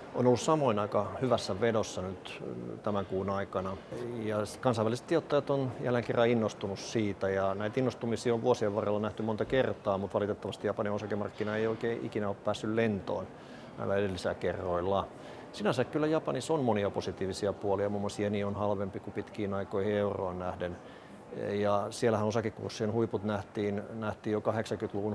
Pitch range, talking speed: 100-115 Hz, 155 wpm